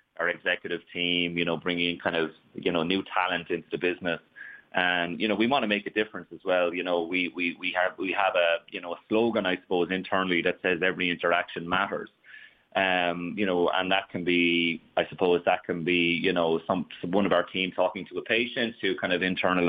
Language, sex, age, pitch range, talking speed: English, male, 30-49, 85-95 Hz, 230 wpm